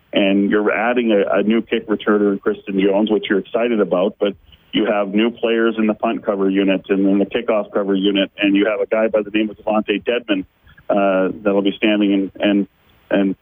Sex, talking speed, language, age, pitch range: male, 220 wpm, English, 40-59, 100-115 Hz